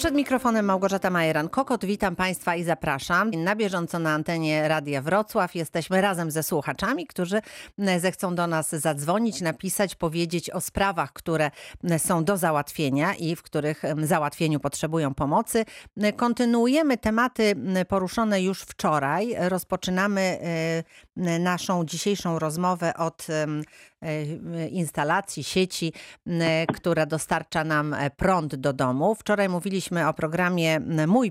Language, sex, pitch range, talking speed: Polish, female, 160-200 Hz, 115 wpm